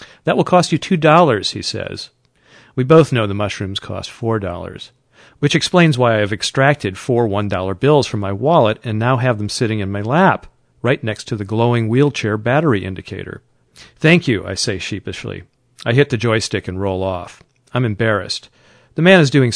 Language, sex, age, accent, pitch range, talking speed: English, male, 50-69, American, 105-125 Hz, 185 wpm